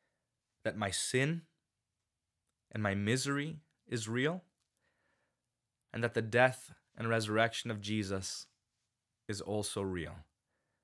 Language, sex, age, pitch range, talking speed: English, male, 20-39, 100-120 Hz, 105 wpm